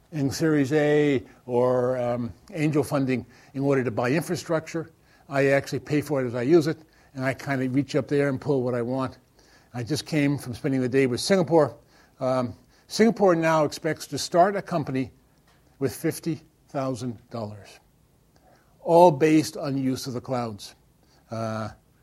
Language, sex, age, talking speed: English, male, 60-79, 165 wpm